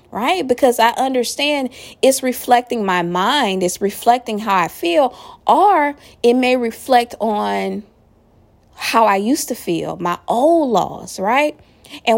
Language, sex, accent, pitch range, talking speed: English, female, American, 190-265 Hz, 140 wpm